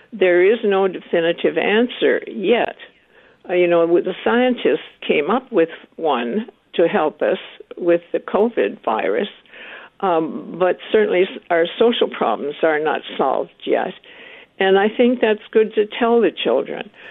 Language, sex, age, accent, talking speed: English, female, 60-79, American, 145 wpm